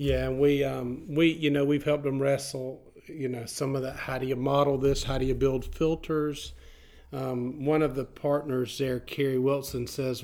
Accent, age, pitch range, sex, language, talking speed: American, 40-59, 120-135 Hz, male, English, 205 wpm